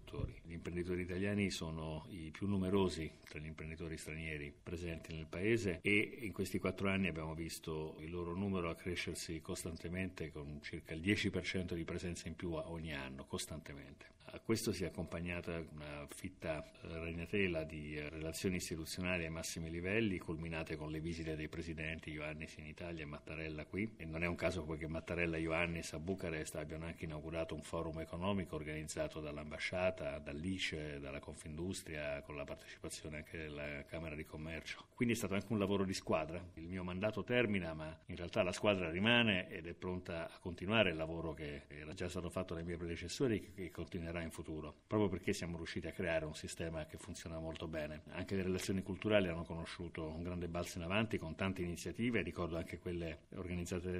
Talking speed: 180 wpm